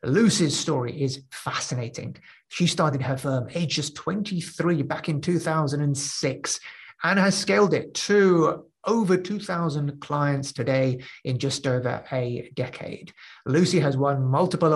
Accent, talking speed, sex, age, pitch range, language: British, 125 wpm, male, 30-49, 135-170 Hz, English